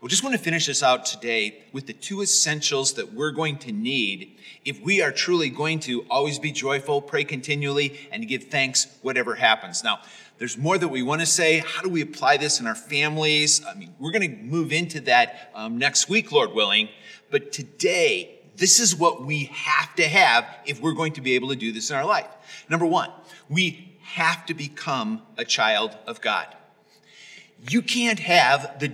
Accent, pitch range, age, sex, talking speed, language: American, 145-205 Hz, 40-59, male, 200 wpm, English